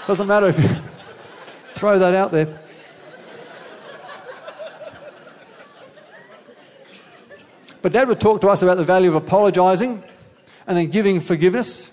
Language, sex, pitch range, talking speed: English, male, 150-195 Hz, 115 wpm